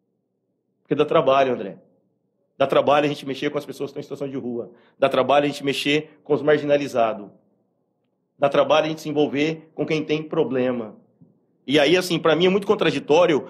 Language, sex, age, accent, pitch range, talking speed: Portuguese, male, 40-59, Brazilian, 150-190 Hz, 195 wpm